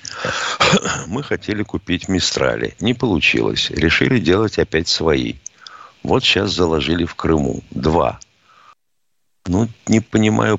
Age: 50-69